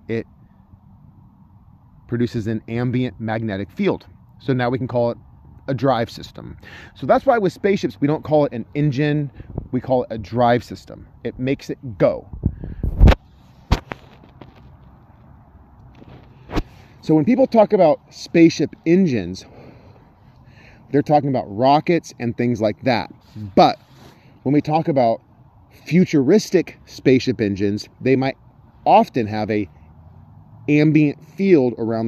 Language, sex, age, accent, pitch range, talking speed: English, male, 30-49, American, 110-145 Hz, 125 wpm